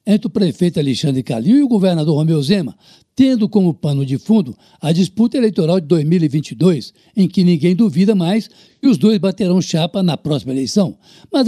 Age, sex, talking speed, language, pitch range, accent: 60-79, male, 180 wpm, Portuguese, 170-215 Hz, Brazilian